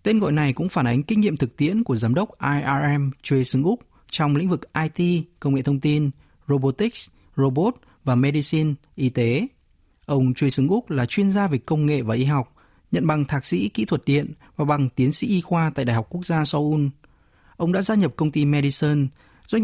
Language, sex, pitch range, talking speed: Vietnamese, male, 130-170 Hz, 210 wpm